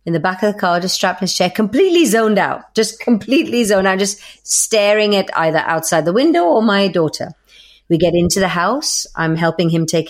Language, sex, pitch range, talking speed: English, female, 185-275 Hz, 215 wpm